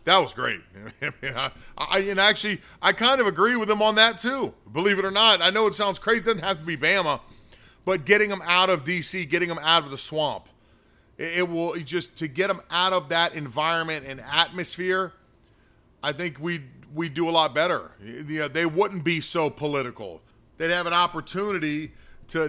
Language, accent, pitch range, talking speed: English, American, 150-190 Hz, 210 wpm